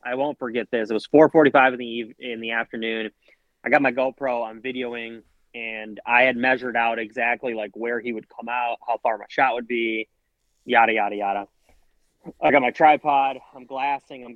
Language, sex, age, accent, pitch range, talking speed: English, male, 20-39, American, 110-130 Hz, 190 wpm